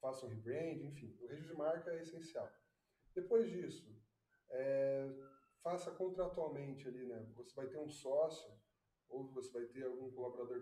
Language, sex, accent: Portuguese, male, Brazilian